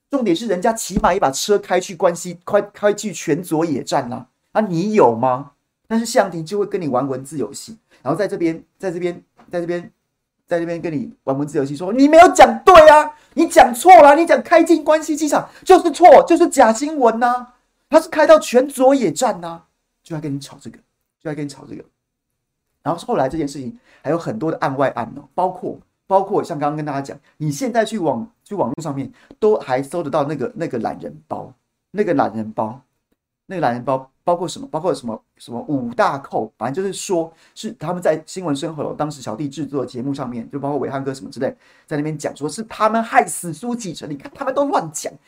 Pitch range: 145-240 Hz